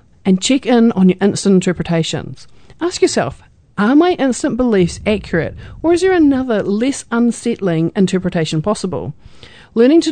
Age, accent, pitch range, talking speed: 40-59, Australian, 175-245 Hz, 140 wpm